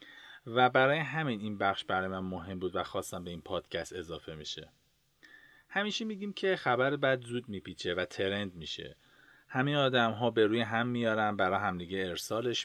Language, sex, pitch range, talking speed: Persian, male, 100-135 Hz, 170 wpm